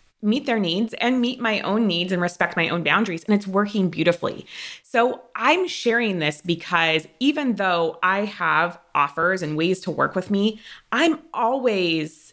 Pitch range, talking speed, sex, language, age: 160-215 Hz, 170 wpm, female, English, 20-39